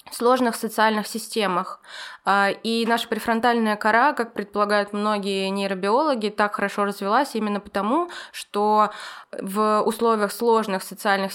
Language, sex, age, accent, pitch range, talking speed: Russian, female, 20-39, native, 195-225 Hz, 115 wpm